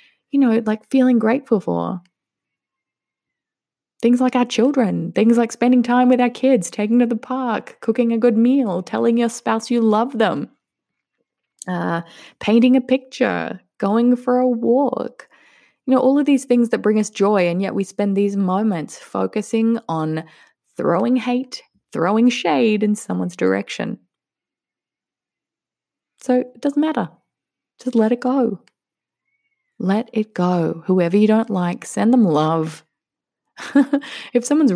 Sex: female